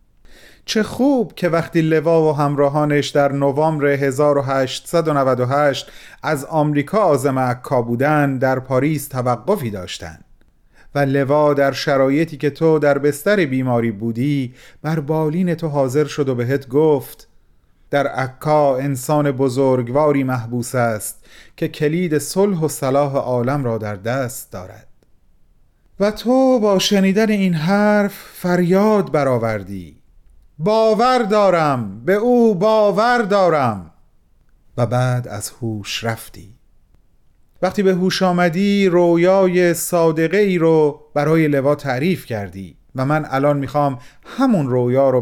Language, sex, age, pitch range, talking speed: Persian, male, 40-59, 130-170 Hz, 120 wpm